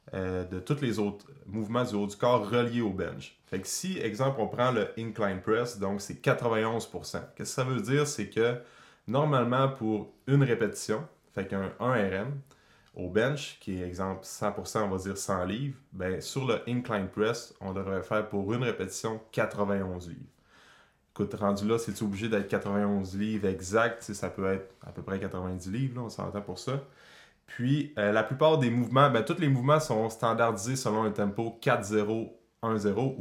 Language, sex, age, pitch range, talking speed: French, male, 20-39, 100-115 Hz, 185 wpm